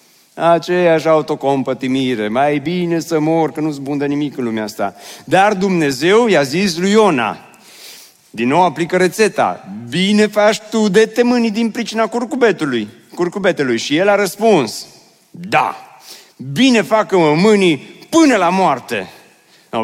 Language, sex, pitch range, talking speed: Romanian, male, 115-175 Hz, 130 wpm